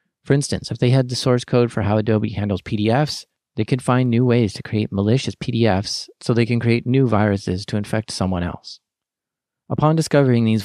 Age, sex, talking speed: 40-59, male, 195 wpm